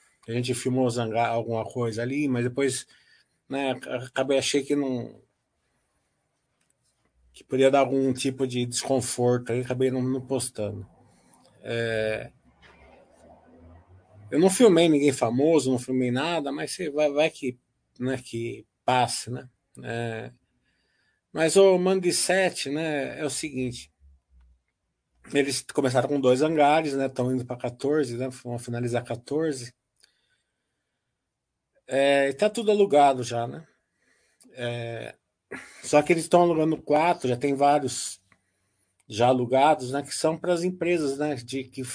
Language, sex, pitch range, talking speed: Portuguese, male, 120-150 Hz, 135 wpm